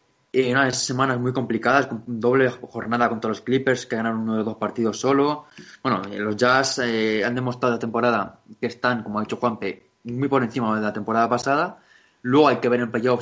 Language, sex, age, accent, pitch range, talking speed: Spanish, male, 20-39, Spanish, 110-130 Hz, 215 wpm